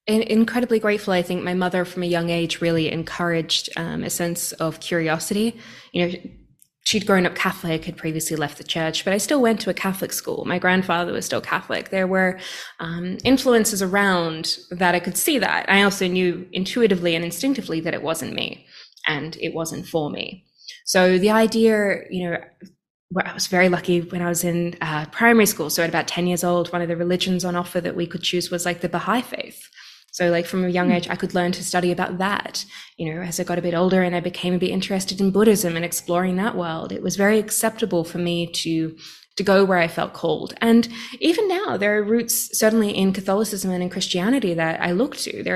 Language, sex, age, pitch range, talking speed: English, female, 20-39, 170-205 Hz, 220 wpm